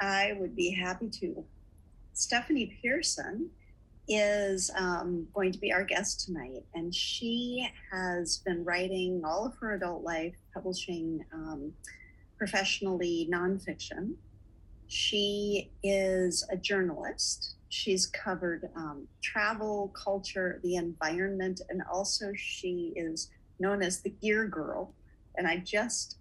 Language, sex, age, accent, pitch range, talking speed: English, female, 50-69, American, 165-195 Hz, 120 wpm